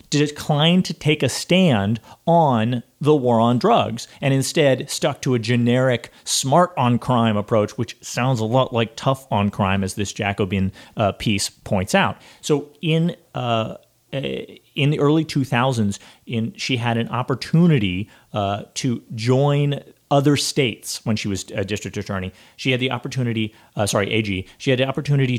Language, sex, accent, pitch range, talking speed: English, male, American, 105-135 Hz, 165 wpm